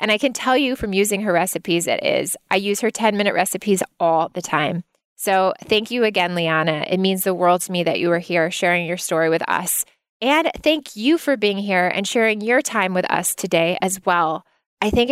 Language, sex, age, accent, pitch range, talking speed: English, female, 20-39, American, 180-220 Hz, 220 wpm